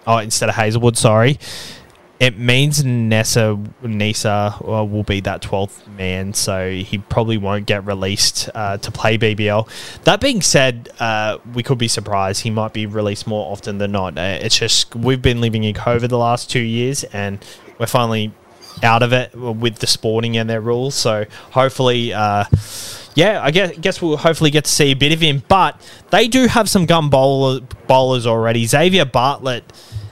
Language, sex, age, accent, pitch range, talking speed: English, male, 20-39, Australian, 110-135 Hz, 180 wpm